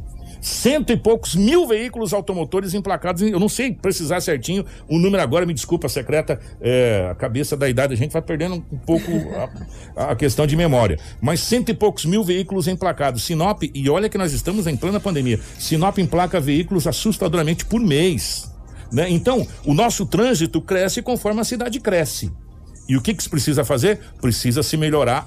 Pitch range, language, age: 125-195 Hz, Portuguese, 60-79